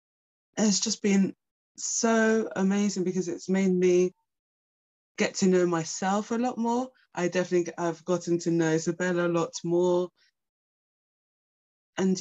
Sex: female